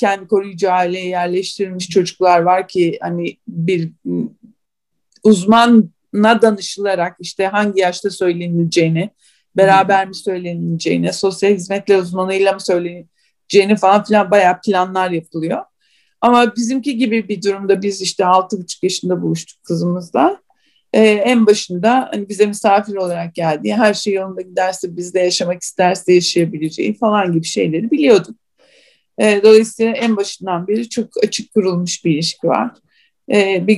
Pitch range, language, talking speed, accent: 180-220 Hz, Turkish, 125 wpm, native